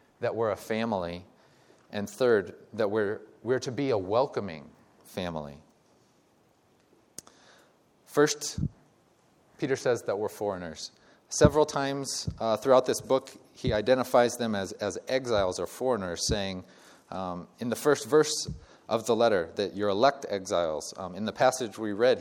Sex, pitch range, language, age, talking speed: male, 105-135 Hz, English, 30-49, 145 wpm